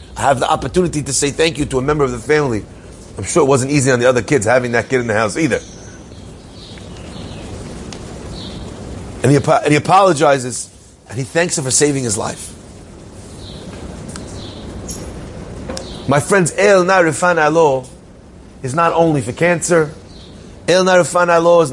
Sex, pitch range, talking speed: male, 125-180 Hz, 145 wpm